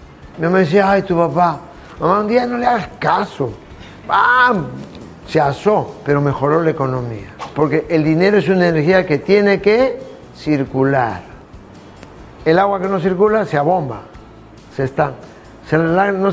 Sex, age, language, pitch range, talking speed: male, 50-69, Spanish, 140-195 Hz, 140 wpm